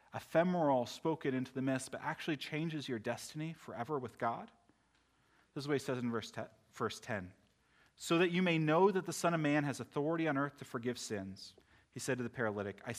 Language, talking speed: English, 210 wpm